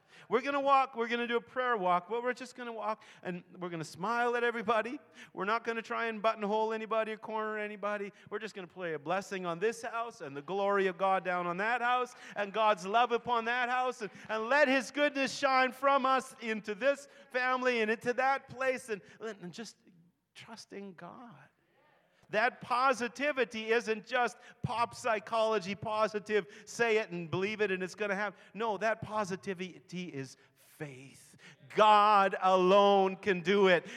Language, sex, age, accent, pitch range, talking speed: English, male, 40-59, American, 185-235 Hz, 190 wpm